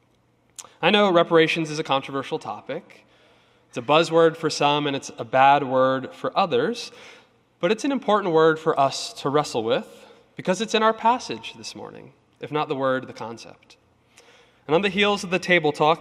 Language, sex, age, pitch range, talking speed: English, male, 20-39, 130-175 Hz, 185 wpm